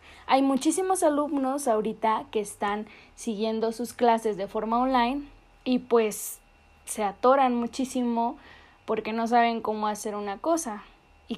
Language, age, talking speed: Spanish, 10-29, 130 wpm